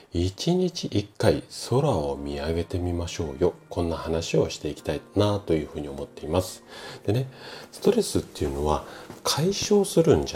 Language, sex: Japanese, male